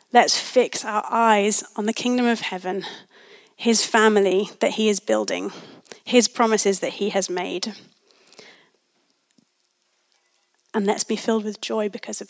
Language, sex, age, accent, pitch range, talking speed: English, female, 30-49, British, 210-245 Hz, 140 wpm